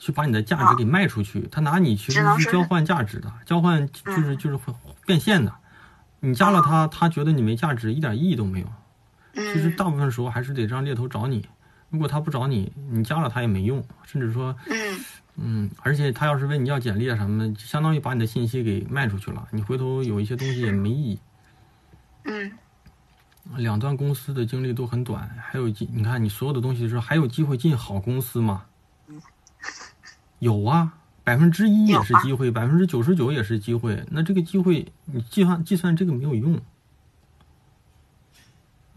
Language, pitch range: Chinese, 115-155 Hz